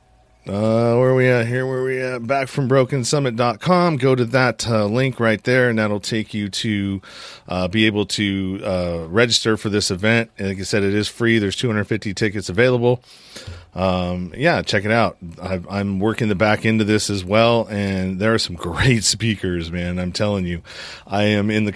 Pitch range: 95-120 Hz